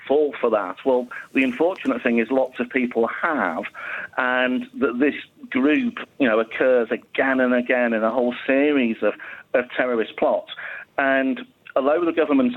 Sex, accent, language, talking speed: male, British, English, 160 wpm